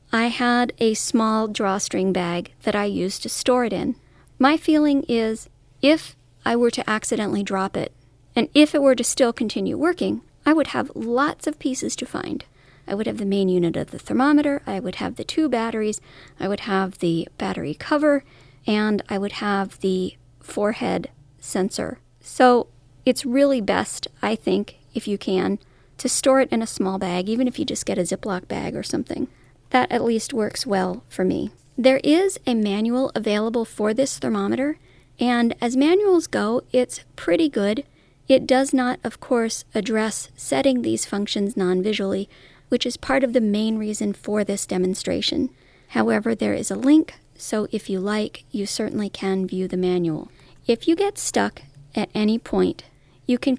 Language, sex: English, female